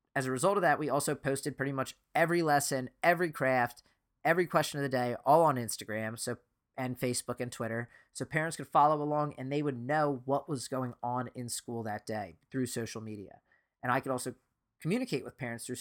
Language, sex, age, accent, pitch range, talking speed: English, male, 30-49, American, 120-145 Hz, 210 wpm